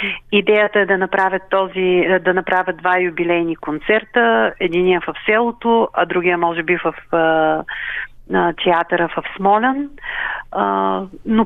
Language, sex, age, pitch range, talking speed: Bulgarian, female, 40-59, 180-220 Hz, 135 wpm